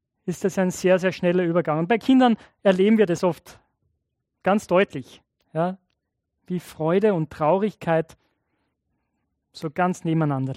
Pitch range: 160-205 Hz